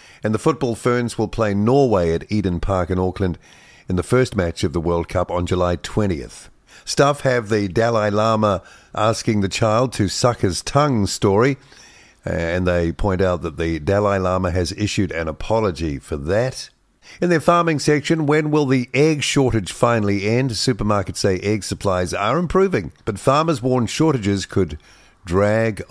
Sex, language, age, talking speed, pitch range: male, English, 50-69, 170 wpm, 95-130 Hz